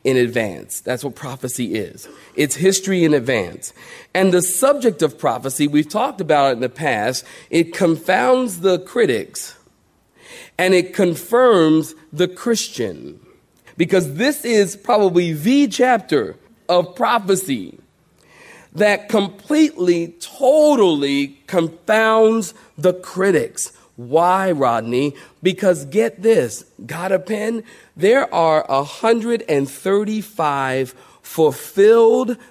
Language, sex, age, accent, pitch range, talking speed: English, male, 40-59, American, 150-220 Hz, 105 wpm